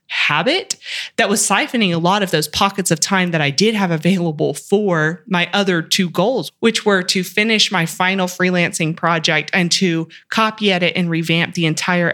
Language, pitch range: English, 160-195 Hz